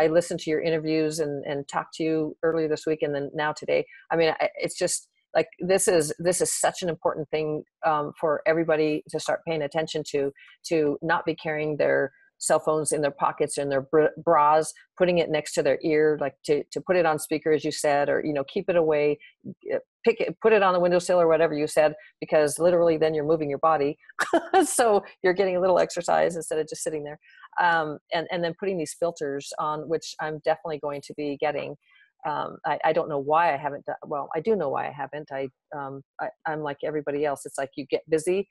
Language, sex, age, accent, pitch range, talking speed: English, female, 40-59, American, 150-175 Hz, 230 wpm